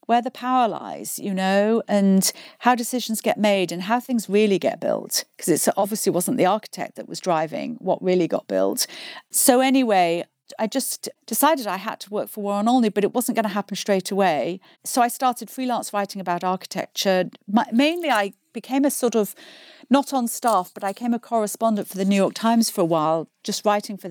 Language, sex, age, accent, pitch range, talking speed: English, female, 40-59, British, 195-245 Hz, 205 wpm